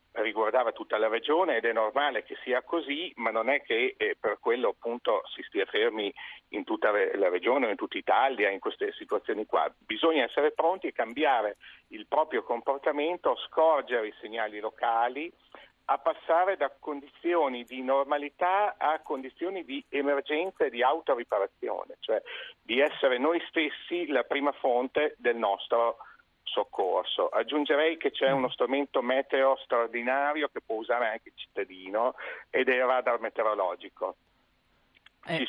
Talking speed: 145 wpm